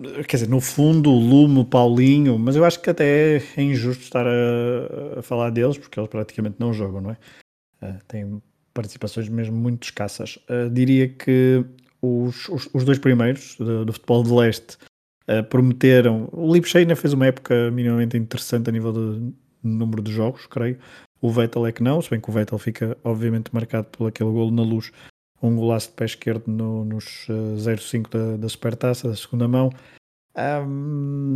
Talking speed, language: 170 wpm, Portuguese